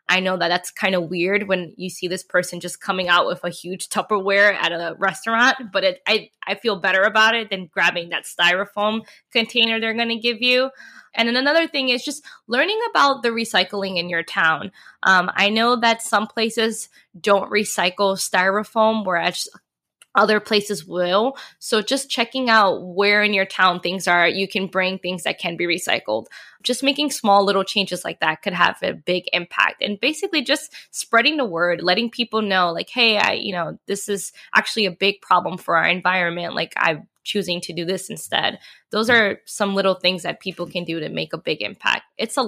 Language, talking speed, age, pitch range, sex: English, 200 wpm, 20-39, 180-225 Hz, female